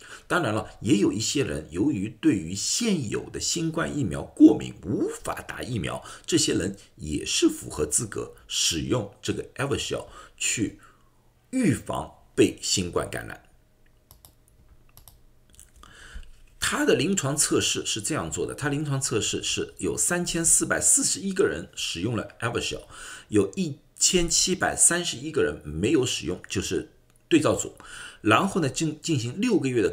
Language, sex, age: Chinese, male, 50-69